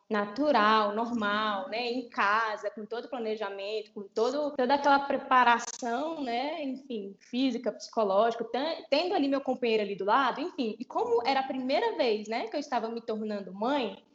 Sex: female